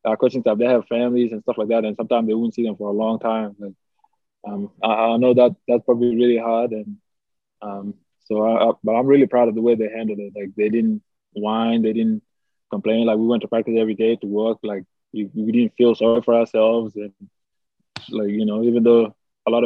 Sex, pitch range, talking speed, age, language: male, 110-125 Hz, 230 wpm, 20-39, English